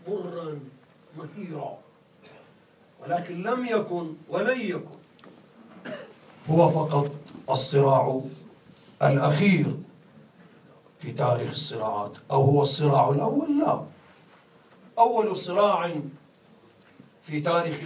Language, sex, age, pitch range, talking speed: English, male, 50-69, 145-180 Hz, 80 wpm